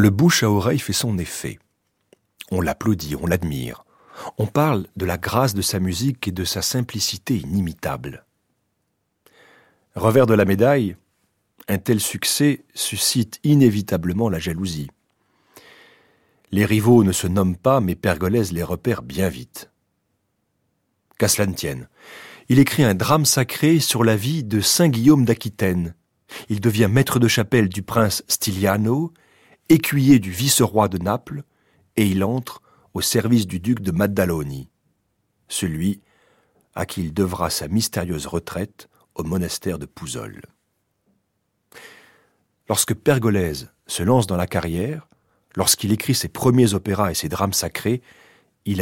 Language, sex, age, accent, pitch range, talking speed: French, male, 40-59, French, 95-125 Hz, 140 wpm